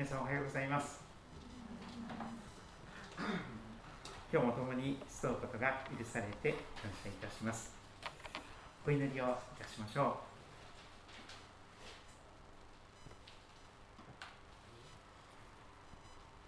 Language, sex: Japanese, male